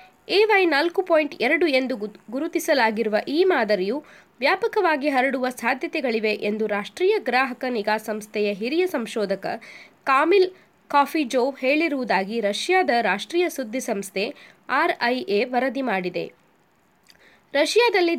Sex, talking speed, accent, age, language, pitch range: female, 95 wpm, native, 20-39, Kannada, 225-330 Hz